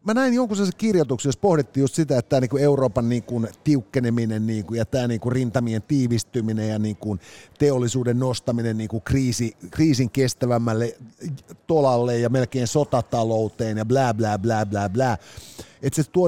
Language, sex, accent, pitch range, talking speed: Finnish, male, native, 115-165 Hz, 145 wpm